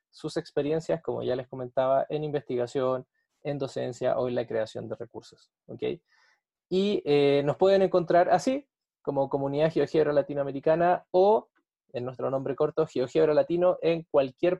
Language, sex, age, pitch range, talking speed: Spanish, male, 20-39, 130-165 Hz, 150 wpm